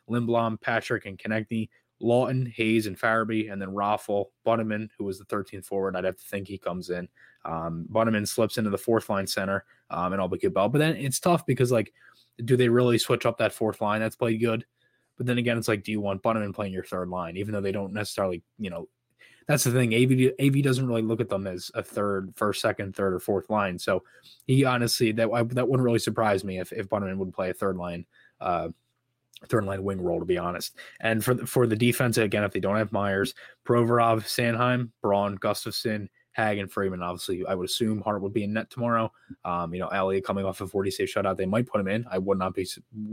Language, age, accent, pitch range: English, 20-39, American, 100-120 Hz